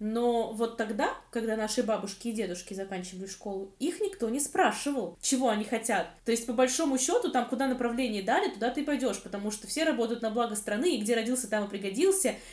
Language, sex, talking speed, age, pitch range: Russian, female, 200 wpm, 20-39, 215-255 Hz